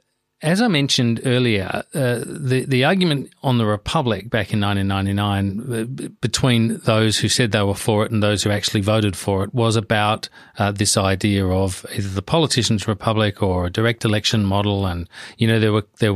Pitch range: 100-120 Hz